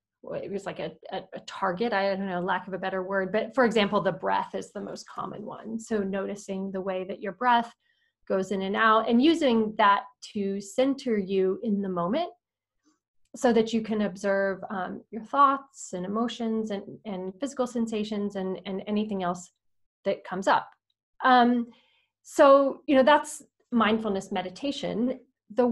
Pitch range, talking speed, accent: 195-240 Hz, 175 wpm, American